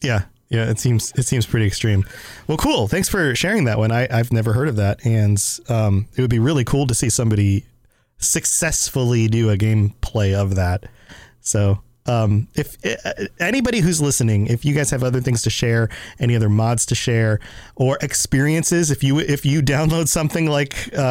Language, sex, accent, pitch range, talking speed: English, male, American, 115-155 Hz, 190 wpm